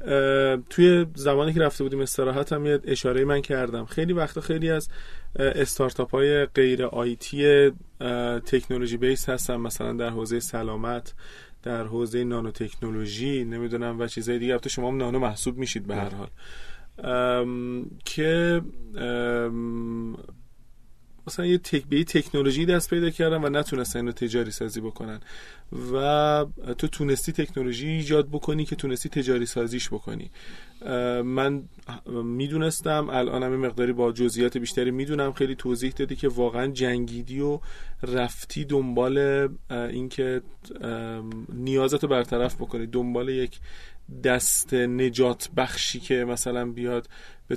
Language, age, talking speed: Persian, 30-49, 130 wpm